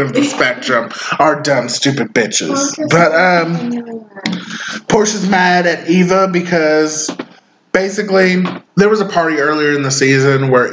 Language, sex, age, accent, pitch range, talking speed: English, male, 20-39, American, 135-175 Hz, 135 wpm